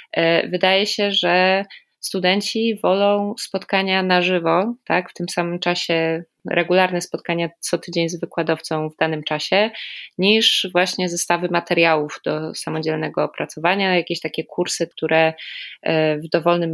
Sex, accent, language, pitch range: female, native, Polish, 165-185 Hz